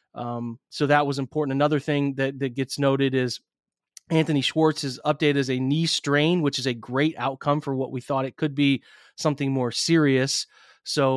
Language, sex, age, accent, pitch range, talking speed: English, male, 30-49, American, 130-150 Hz, 190 wpm